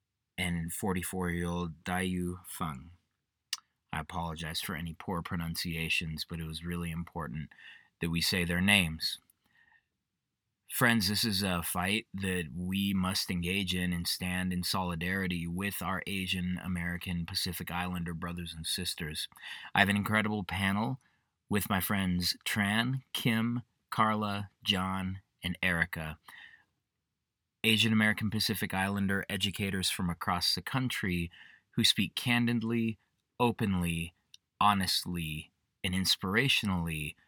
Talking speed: 115 wpm